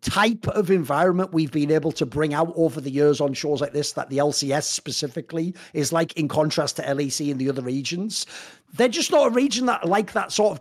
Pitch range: 150-225 Hz